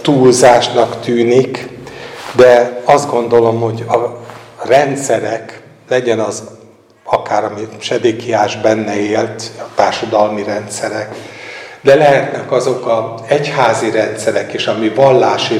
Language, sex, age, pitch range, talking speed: Hungarian, male, 60-79, 120-150 Hz, 110 wpm